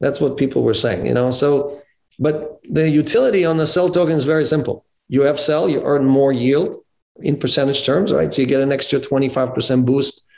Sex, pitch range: male, 130-165 Hz